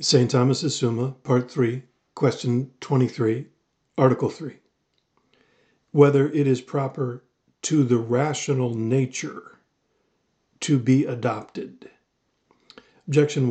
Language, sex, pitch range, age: English, male, 125-145 Hz, 40-59